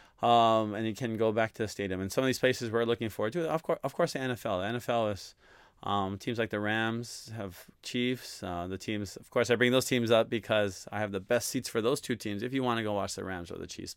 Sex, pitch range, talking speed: male, 100-120 Hz, 280 wpm